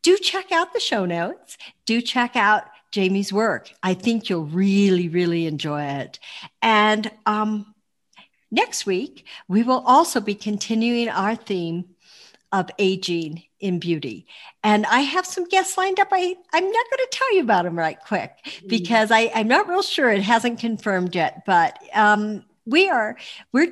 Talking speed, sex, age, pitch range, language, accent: 165 wpm, female, 60-79, 200-300 Hz, English, American